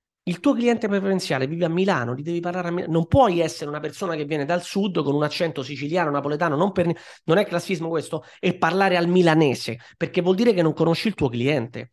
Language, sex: Italian, male